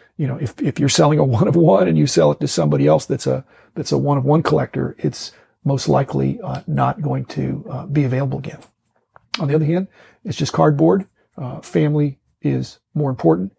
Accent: American